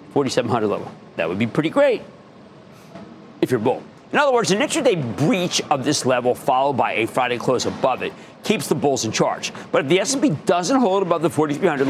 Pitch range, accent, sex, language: 135-190 Hz, American, male, English